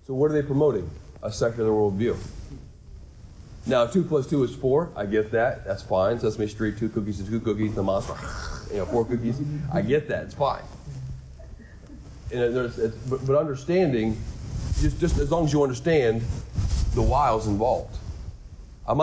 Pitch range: 105-135 Hz